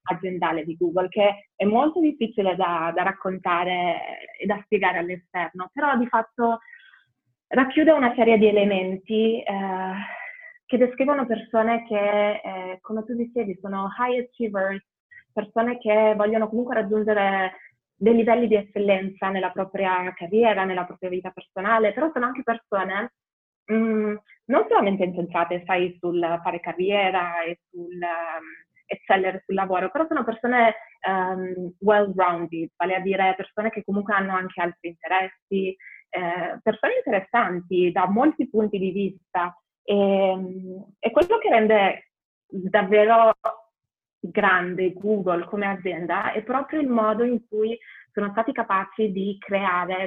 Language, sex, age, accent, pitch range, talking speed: Italian, female, 20-39, native, 185-225 Hz, 135 wpm